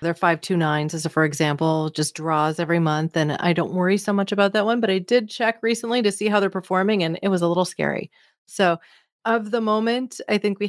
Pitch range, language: 165-205 Hz, English